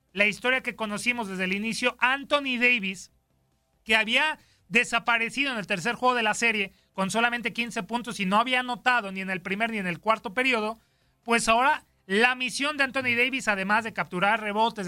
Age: 30-49